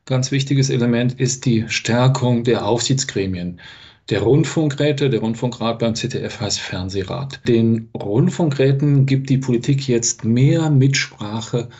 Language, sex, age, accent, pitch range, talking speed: German, male, 40-59, German, 115-140 Hz, 120 wpm